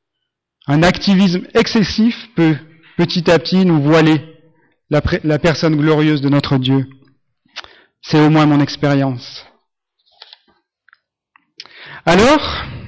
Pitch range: 145-180 Hz